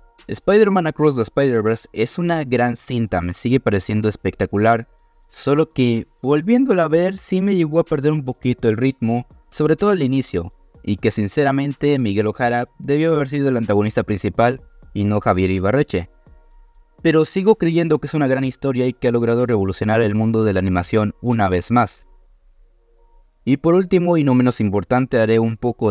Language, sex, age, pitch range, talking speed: Spanish, male, 20-39, 100-140 Hz, 175 wpm